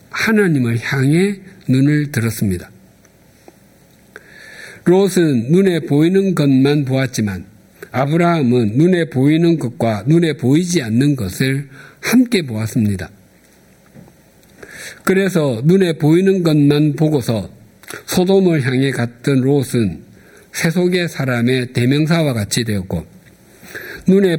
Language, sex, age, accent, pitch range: Korean, male, 60-79, native, 115-155 Hz